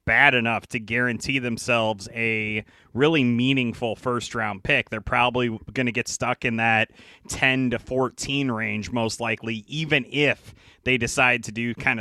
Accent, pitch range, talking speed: American, 110-130 Hz, 160 wpm